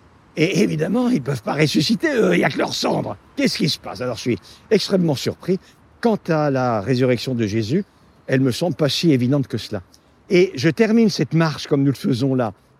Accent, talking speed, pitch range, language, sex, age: French, 215 wpm, 130-195 Hz, French, male, 50-69